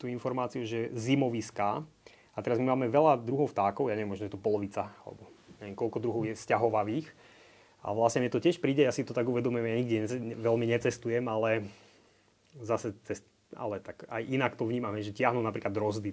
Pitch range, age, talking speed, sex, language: 110-125 Hz, 20-39, 190 wpm, male, Slovak